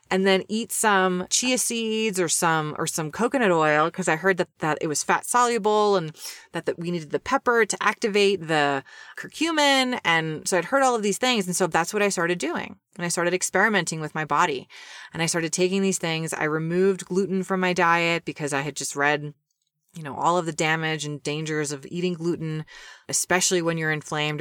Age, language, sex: 30-49, English, female